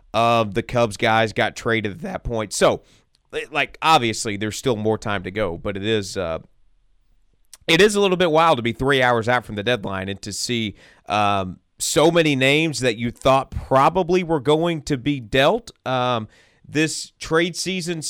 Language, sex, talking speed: English, male, 185 wpm